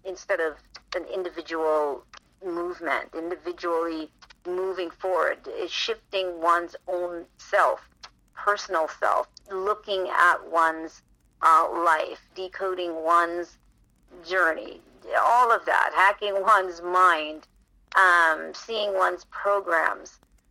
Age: 50-69